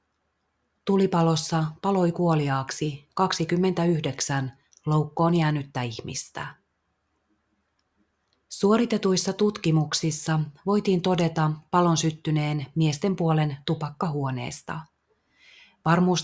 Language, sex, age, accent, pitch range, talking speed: Finnish, female, 30-49, native, 140-175 Hz, 65 wpm